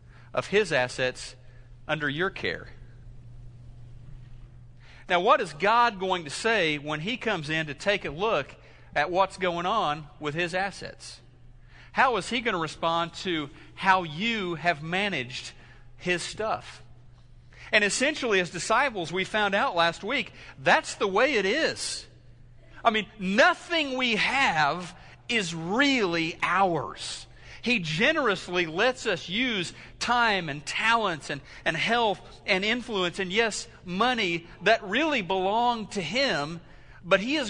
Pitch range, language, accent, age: 145-220 Hz, English, American, 40-59